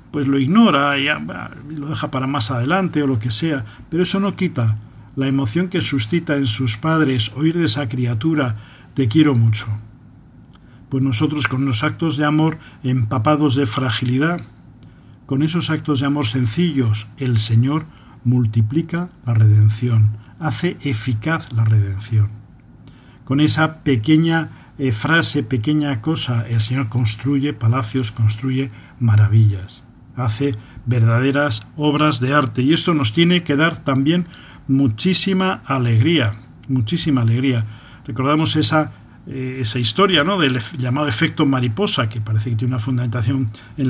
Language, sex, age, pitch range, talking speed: Spanish, male, 50-69, 120-150 Hz, 140 wpm